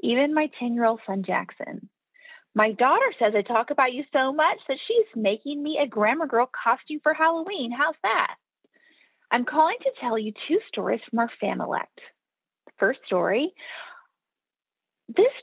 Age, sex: 30-49, female